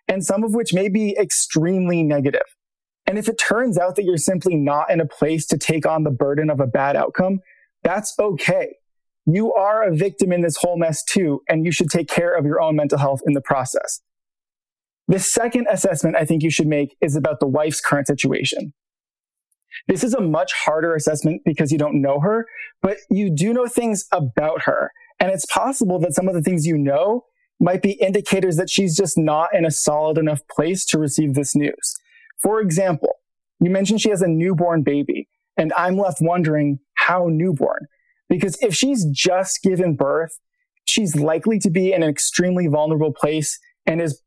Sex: male